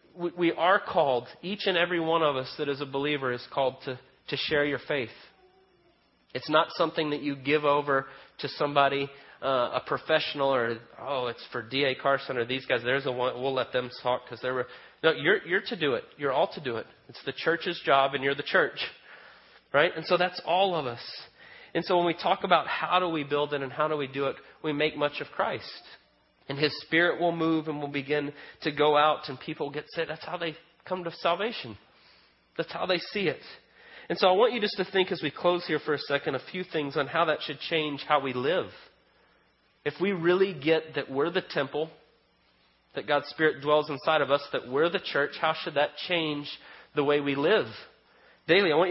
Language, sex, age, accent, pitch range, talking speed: English, male, 30-49, American, 140-165 Hz, 220 wpm